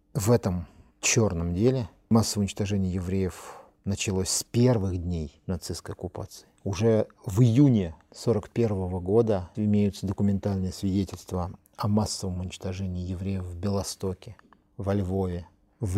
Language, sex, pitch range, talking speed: Russian, male, 90-105 Hz, 115 wpm